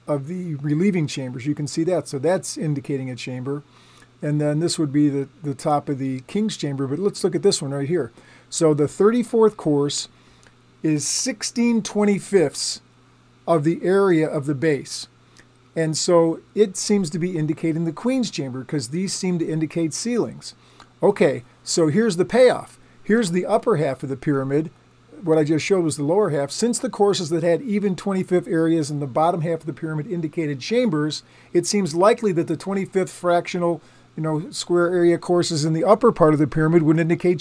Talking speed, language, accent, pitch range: 190 wpm, English, American, 150-190 Hz